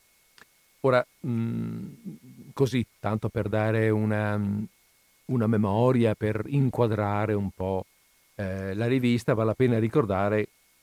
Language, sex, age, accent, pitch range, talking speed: Italian, male, 50-69, native, 100-130 Hz, 105 wpm